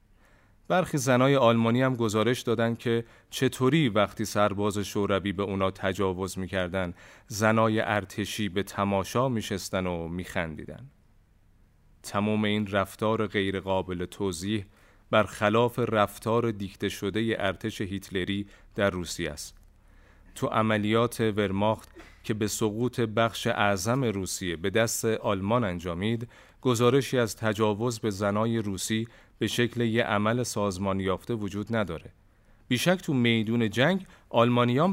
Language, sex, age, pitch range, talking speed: Persian, male, 30-49, 100-115 Hz, 115 wpm